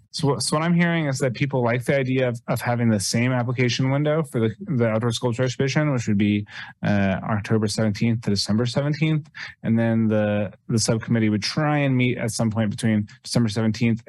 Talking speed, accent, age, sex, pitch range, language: 205 wpm, American, 20-39, male, 105-125 Hz, English